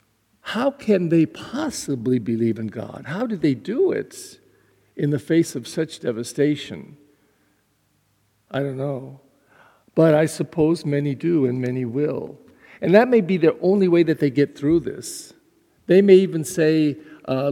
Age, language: 50-69, English